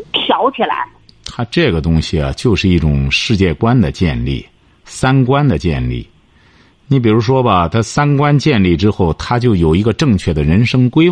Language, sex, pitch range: Chinese, male, 95-145 Hz